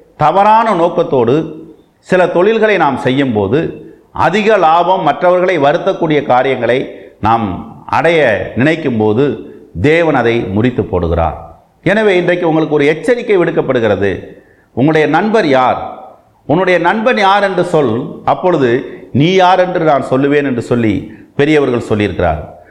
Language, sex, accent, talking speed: Tamil, male, native, 110 wpm